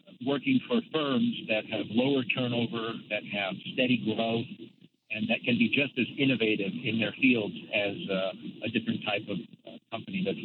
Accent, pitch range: American, 110-160 Hz